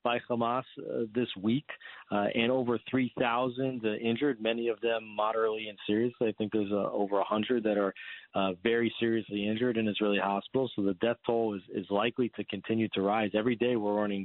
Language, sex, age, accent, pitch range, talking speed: English, male, 40-59, American, 105-125 Hz, 200 wpm